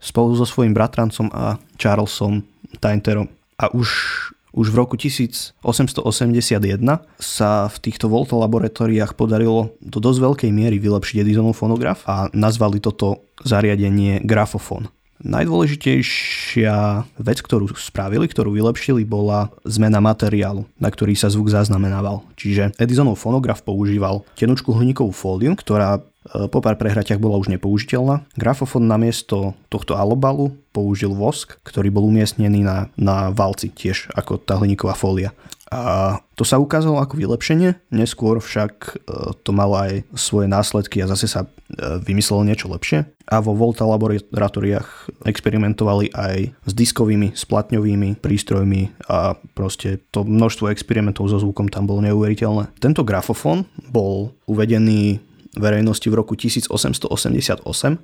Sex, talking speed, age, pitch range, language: male, 125 wpm, 20-39, 100-115 Hz, Slovak